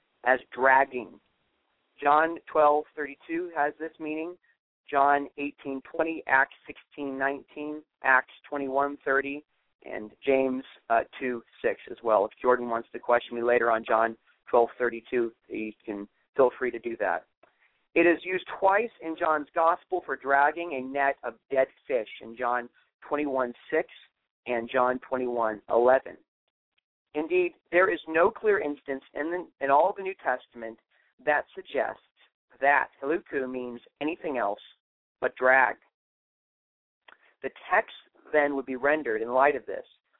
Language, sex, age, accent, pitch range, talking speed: English, male, 40-59, American, 125-170 Hz, 135 wpm